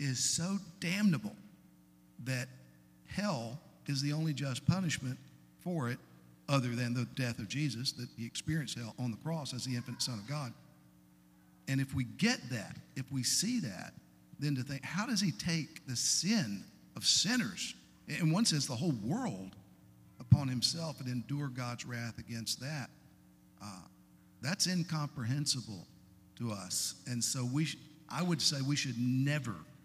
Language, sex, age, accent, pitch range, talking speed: English, male, 50-69, American, 100-135 Hz, 160 wpm